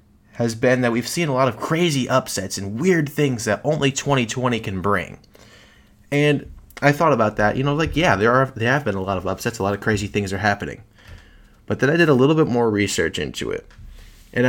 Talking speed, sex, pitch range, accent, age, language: 230 wpm, male, 100-125 Hz, American, 20-39, English